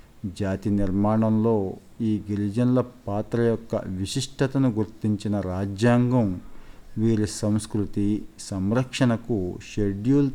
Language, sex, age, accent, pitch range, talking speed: Telugu, male, 50-69, native, 100-120 Hz, 75 wpm